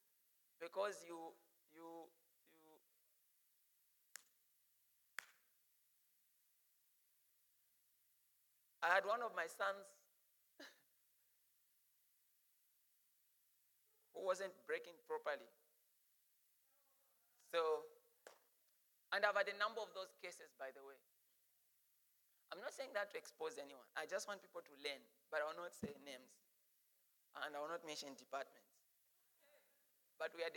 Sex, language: male, English